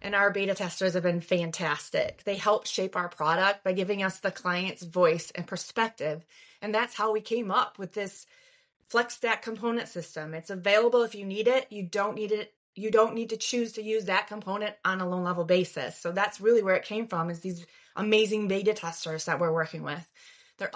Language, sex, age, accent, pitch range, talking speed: English, female, 30-49, American, 175-235 Hz, 210 wpm